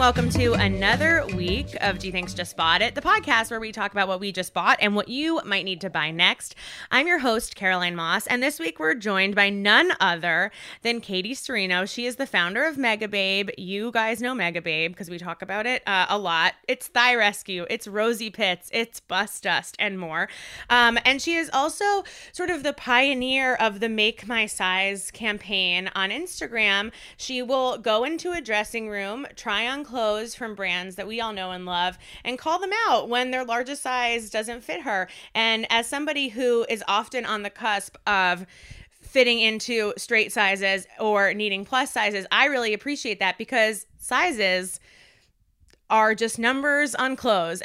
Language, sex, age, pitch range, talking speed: English, female, 20-39, 195-250 Hz, 190 wpm